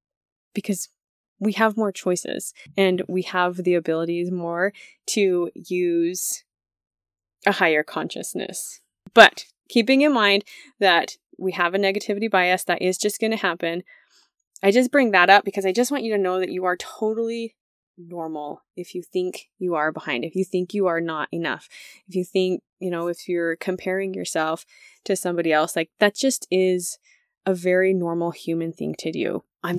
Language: English